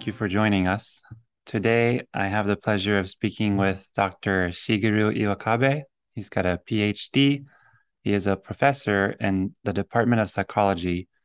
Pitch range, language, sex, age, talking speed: 95-115 Hz, English, male, 20-39, 155 wpm